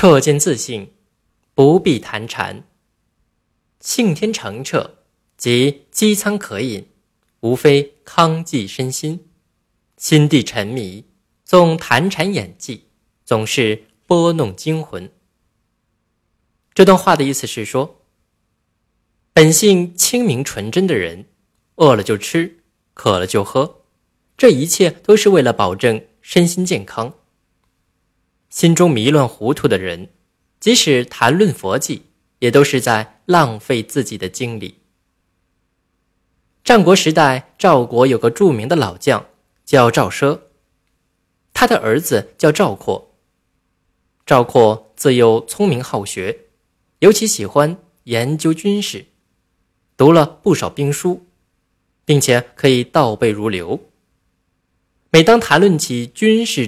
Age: 20-39